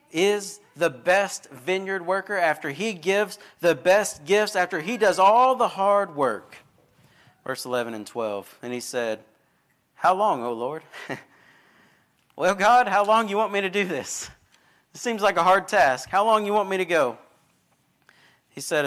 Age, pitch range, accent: 40-59, 120-170 Hz, American